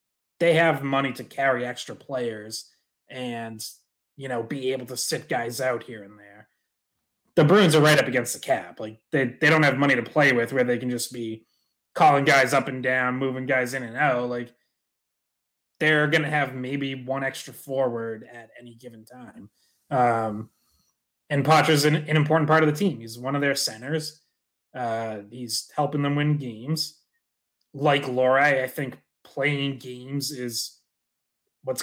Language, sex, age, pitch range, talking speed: English, male, 20-39, 125-150 Hz, 175 wpm